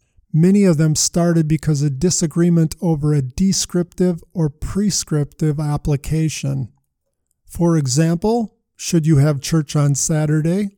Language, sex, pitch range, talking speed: English, male, 145-170 Hz, 115 wpm